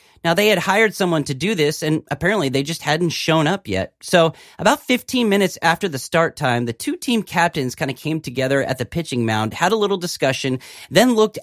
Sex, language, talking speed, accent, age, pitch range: male, English, 220 wpm, American, 30-49, 130-185 Hz